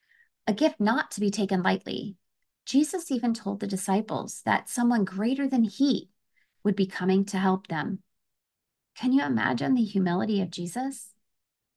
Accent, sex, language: American, female, English